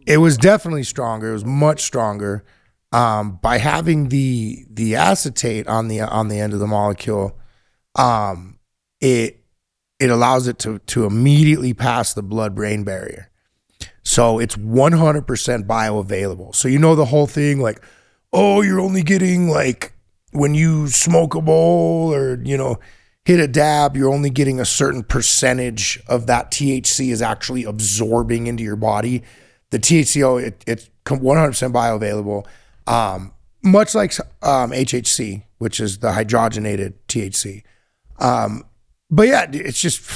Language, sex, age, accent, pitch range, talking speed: English, male, 30-49, American, 110-140 Hz, 145 wpm